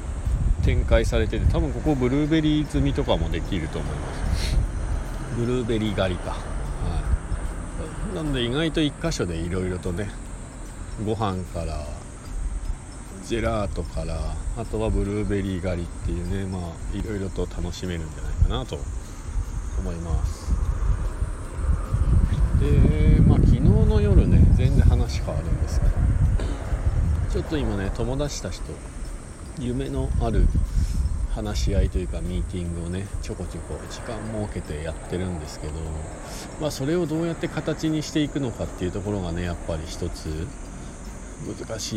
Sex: male